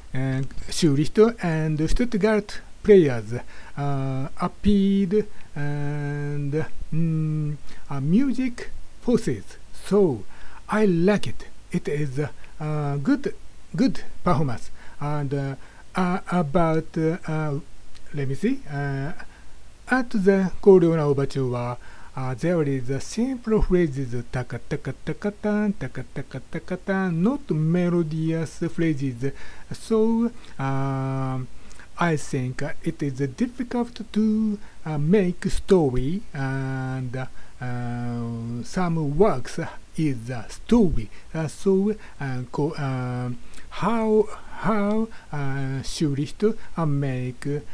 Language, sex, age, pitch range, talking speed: English, male, 60-79, 135-190 Hz, 95 wpm